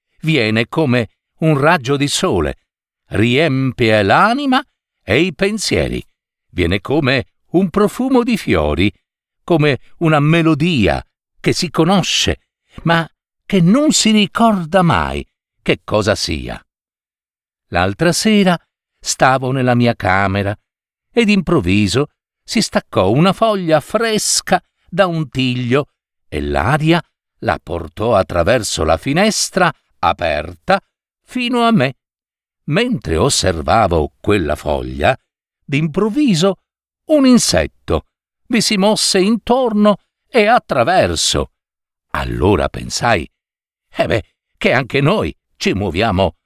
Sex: male